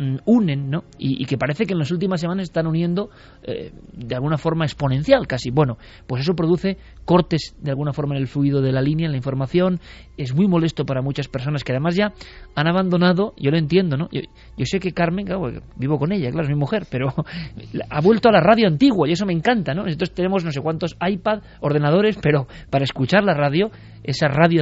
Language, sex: Spanish, male